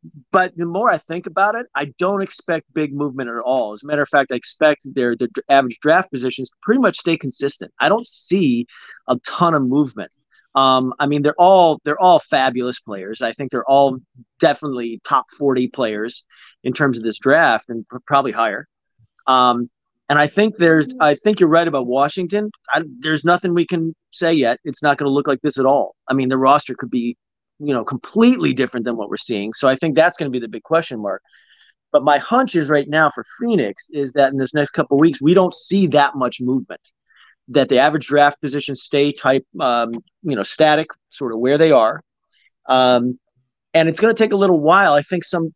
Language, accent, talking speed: English, American, 215 wpm